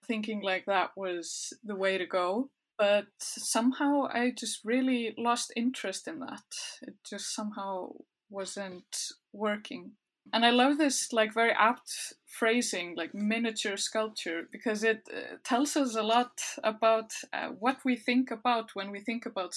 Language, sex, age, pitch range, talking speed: English, female, 20-39, 200-245 Hz, 150 wpm